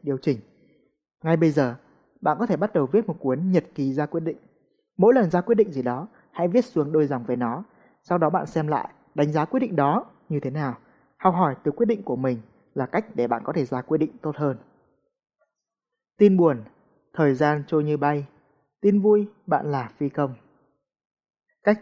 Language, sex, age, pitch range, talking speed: Vietnamese, male, 20-39, 140-185 Hz, 210 wpm